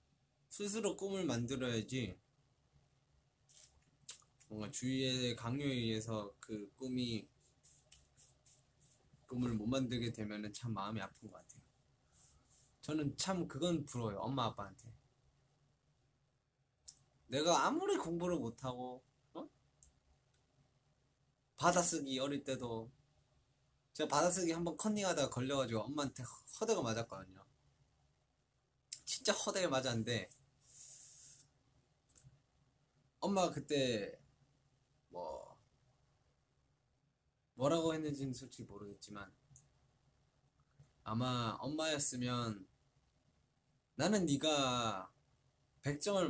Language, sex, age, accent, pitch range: Korean, male, 20-39, native, 120-150 Hz